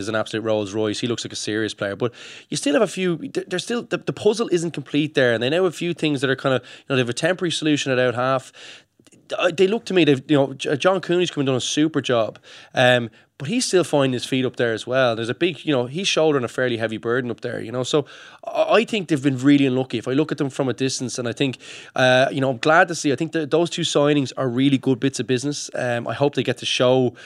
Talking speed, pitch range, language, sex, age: 285 wpm, 115-145 Hz, English, male, 20-39